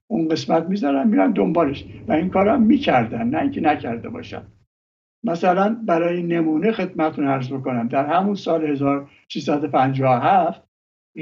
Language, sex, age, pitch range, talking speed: English, male, 60-79, 135-185 Hz, 130 wpm